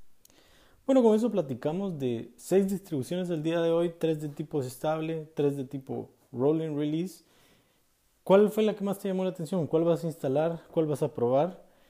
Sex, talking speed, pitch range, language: male, 185 wpm, 135-175 Hz, Spanish